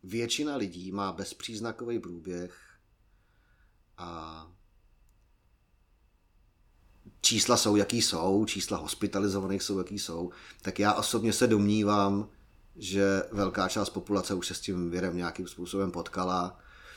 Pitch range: 90-100 Hz